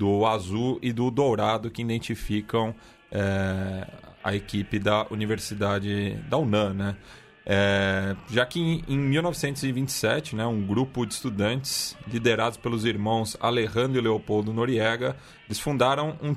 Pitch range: 110-140 Hz